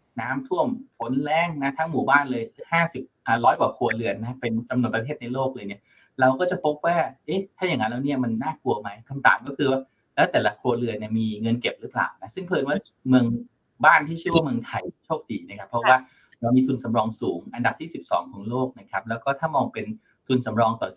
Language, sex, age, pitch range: Thai, male, 20-39, 115-150 Hz